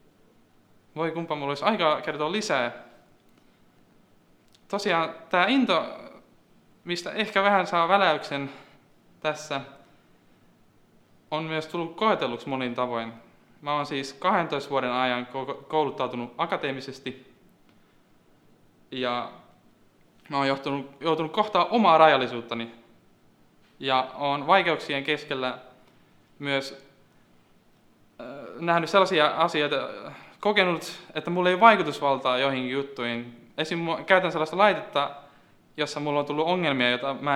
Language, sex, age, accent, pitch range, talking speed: Finnish, male, 20-39, native, 130-160 Hz, 105 wpm